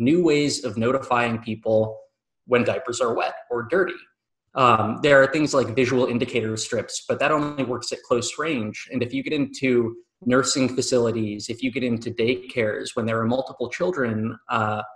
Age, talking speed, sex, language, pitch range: 20-39, 175 wpm, male, English, 115-145 Hz